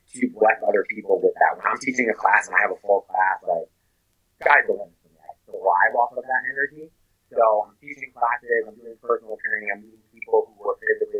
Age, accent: 30-49, American